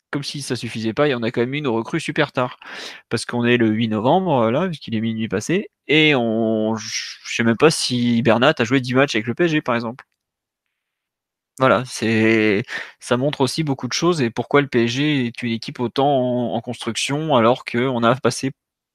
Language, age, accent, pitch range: French, 20-39, French, 115-145 Hz